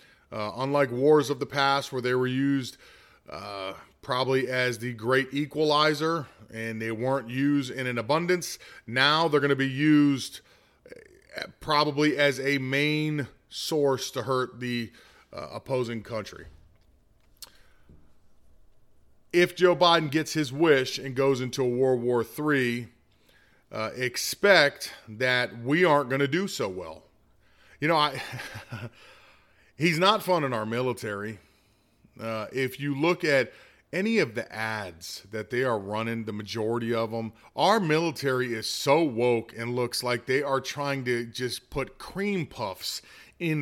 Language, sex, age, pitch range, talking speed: English, male, 30-49, 120-150 Hz, 145 wpm